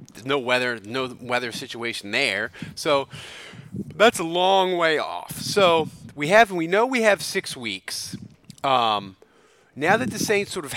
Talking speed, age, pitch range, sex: 155 wpm, 30-49, 140-190 Hz, male